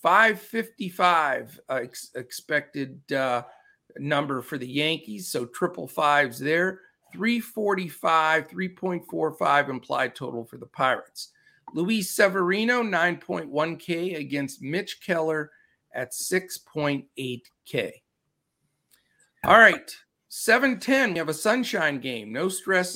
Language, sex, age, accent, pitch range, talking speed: English, male, 50-69, American, 145-195 Hz, 95 wpm